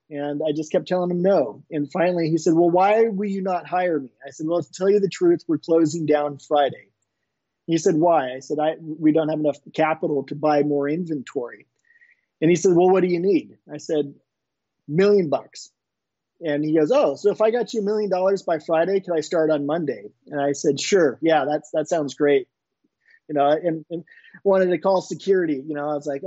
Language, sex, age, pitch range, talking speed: English, male, 30-49, 155-190 Hz, 225 wpm